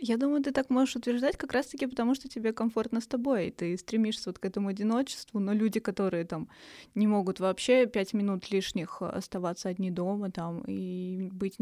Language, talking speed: Russian, 190 wpm